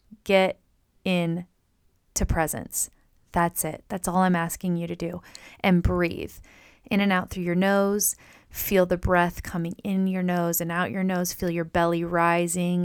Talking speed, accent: 170 wpm, American